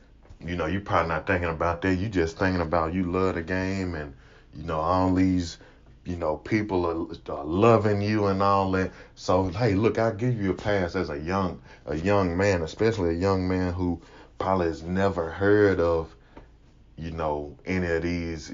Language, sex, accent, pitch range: English, male, American, 80-100 Hz